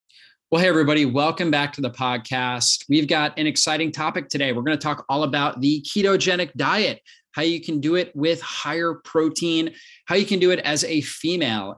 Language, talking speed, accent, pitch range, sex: English, 200 wpm, American, 130-170 Hz, male